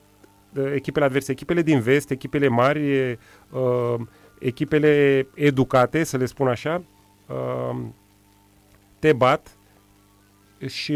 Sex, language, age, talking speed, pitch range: male, Romanian, 30-49, 90 wpm, 125-160 Hz